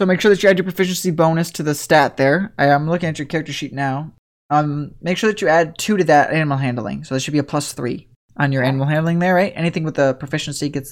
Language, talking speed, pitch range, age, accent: English, 270 wpm, 145-200 Hz, 20-39, American